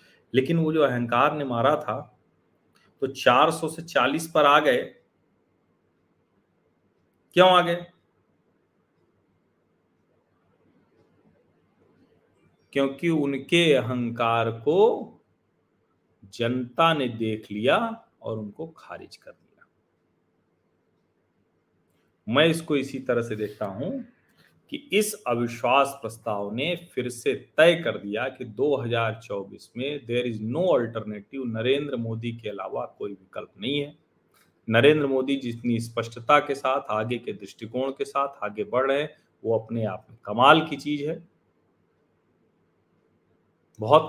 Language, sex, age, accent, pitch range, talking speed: Hindi, male, 40-59, native, 115-145 Hz, 115 wpm